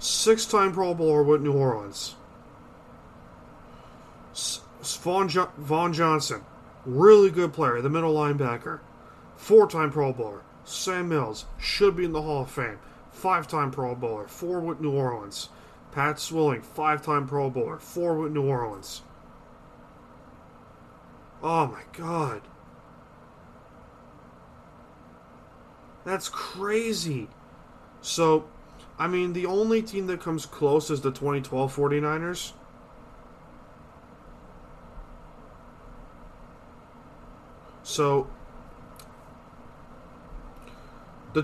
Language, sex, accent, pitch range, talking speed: English, male, American, 130-170 Hz, 90 wpm